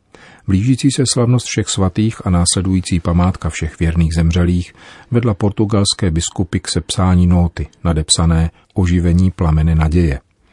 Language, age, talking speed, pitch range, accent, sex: Czech, 40-59, 120 wpm, 80-95 Hz, native, male